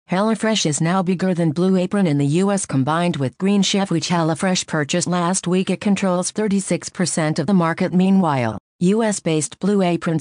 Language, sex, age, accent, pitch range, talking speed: English, female, 50-69, American, 165-195 Hz, 170 wpm